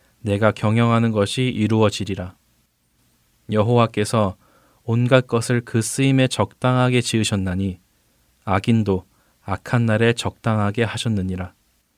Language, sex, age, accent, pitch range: Korean, male, 20-39, native, 100-120 Hz